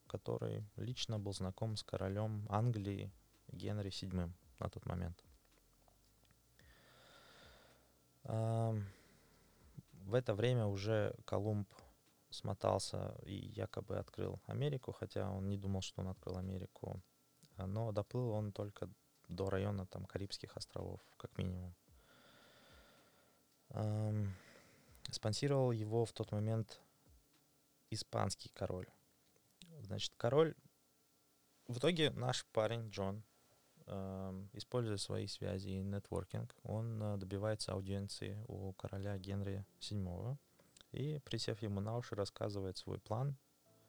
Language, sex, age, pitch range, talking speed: Russian, male, 20-39, 95-115 Hz, 105 wpm